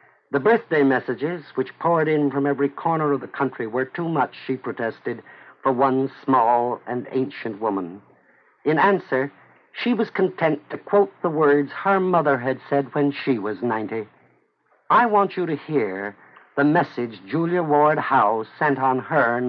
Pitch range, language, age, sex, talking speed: 135-180 Hz, English, 60-79, male, 165 wpm